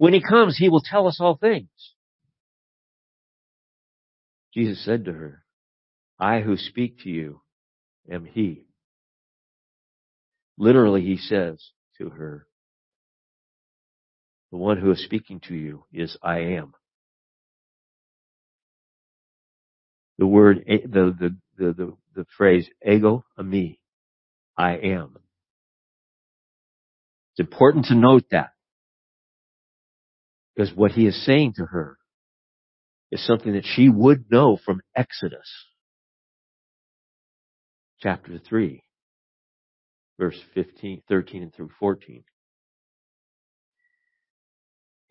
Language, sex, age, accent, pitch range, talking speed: English, male, 60-79, American, 90-125 Hz, 90 wpm